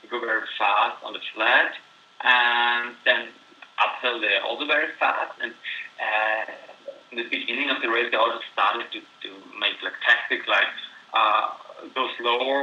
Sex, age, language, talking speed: male, 30-49, English, 160 wpm